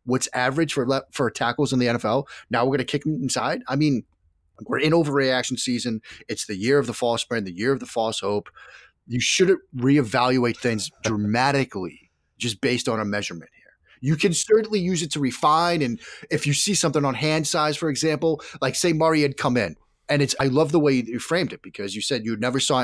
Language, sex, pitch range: English, male, 115-145 Hz